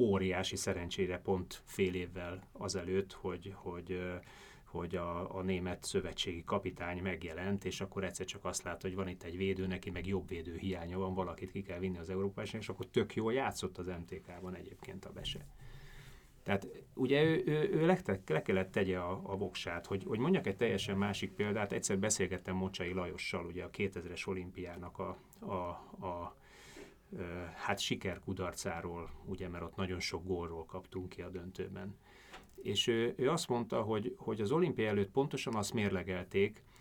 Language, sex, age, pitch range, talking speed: Hungarian, male, 30-49, 90-105 Hz, 170 wpm